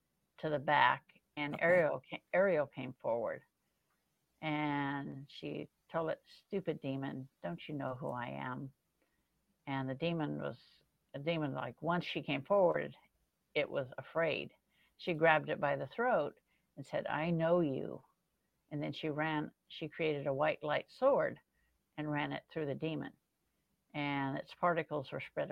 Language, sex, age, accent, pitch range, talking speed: English, female, 60-79, American, 140-180 Hz, 155 wpm